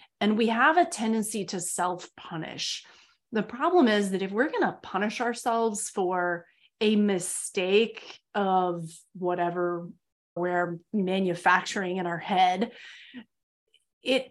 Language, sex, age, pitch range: English, female, 30-49, 190-245 Hz